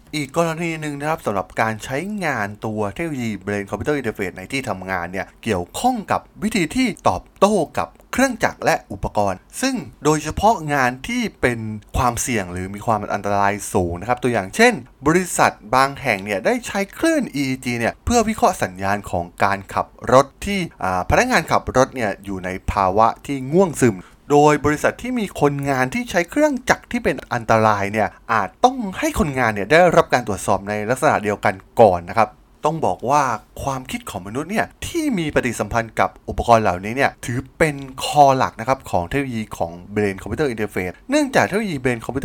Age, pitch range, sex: 20-39, 105-160 Hz, male